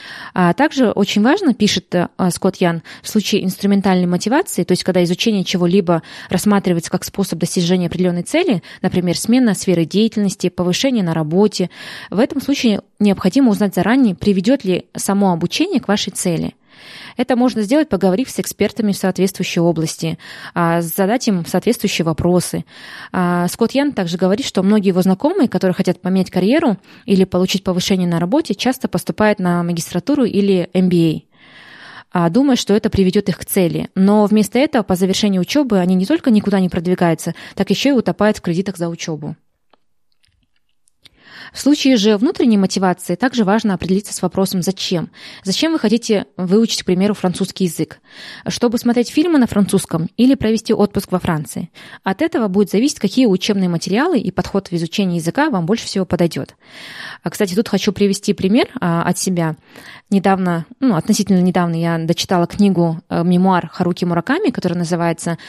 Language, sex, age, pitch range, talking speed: Russian, female, 20-39, 180-215 Hz, 155 wpm